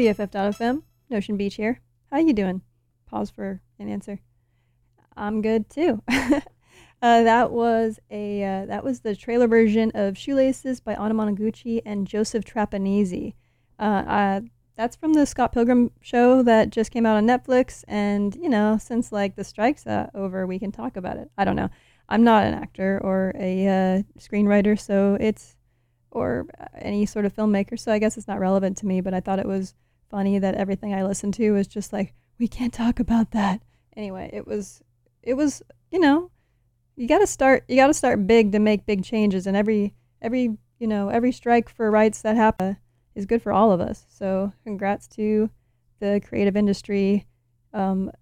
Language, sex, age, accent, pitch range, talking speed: English, female, 20-39, American, 195-230 Hz, 185 wpm